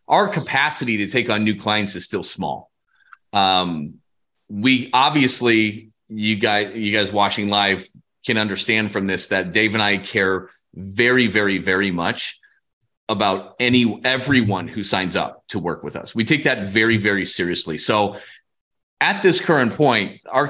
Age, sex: 30-49, male